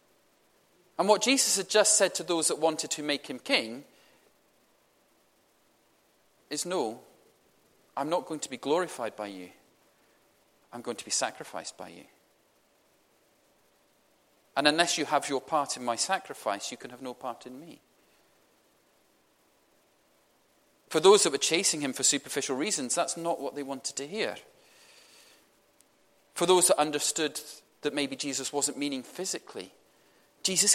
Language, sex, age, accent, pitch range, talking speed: English, male, 40-59, British, 145-190 Hz, 145 wpm